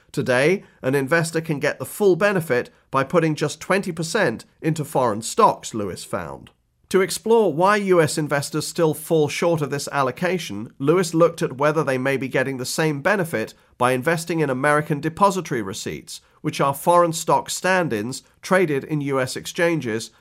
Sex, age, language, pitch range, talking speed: male, 40-59, English, 135-165 Hz, 160 wpm